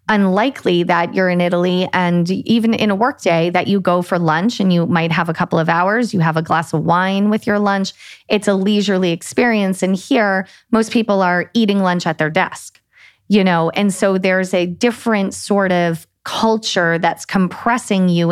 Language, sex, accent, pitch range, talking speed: English, female, American, 170-205 Hz, 195 wpm